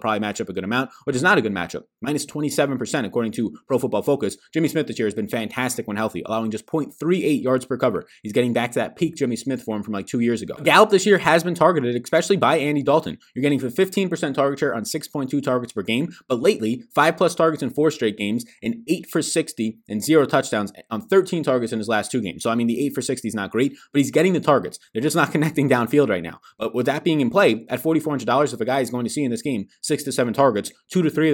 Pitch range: 115-155 Hz